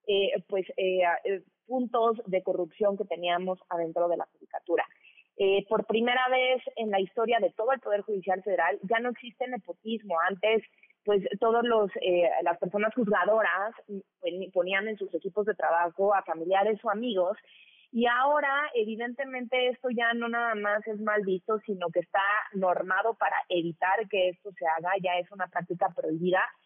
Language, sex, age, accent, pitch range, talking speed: Spanish, female, 30-49, Mexican, 185-235 Hz, 160 wpm